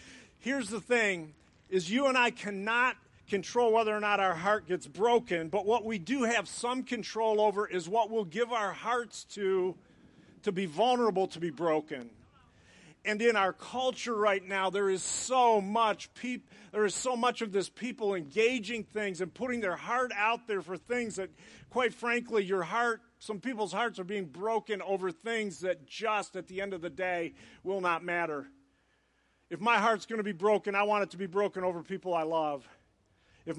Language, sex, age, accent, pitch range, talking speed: English, male, 50-69, American, 180-225 Hz, 190 wpm